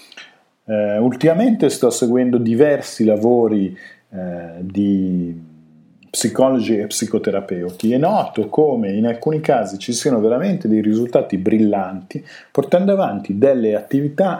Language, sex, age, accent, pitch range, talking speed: Italian, male, 50-69, native, 95-125 Hz, 105 wpm